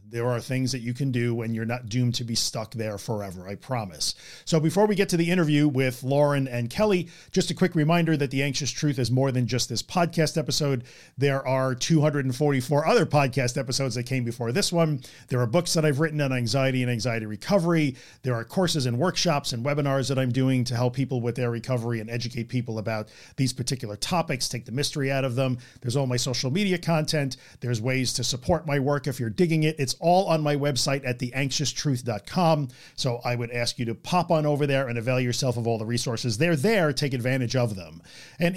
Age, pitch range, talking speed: 40-59, 125-155 Hz, 220 wpm